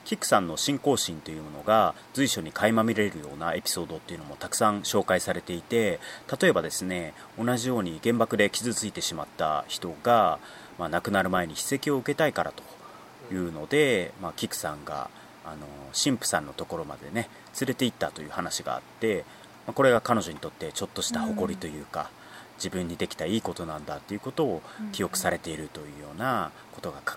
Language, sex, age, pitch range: Japanese, male, 30-49, 80-120 Hz